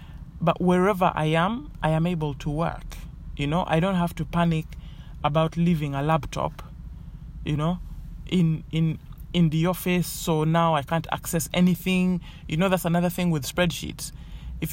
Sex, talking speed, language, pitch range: male, 165 wpm, English, 145-180 Hz